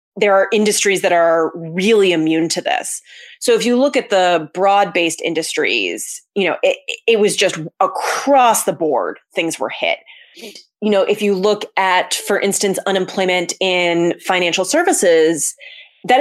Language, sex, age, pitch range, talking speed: English, female, 30-49, 175-240 Hz, 155 wpm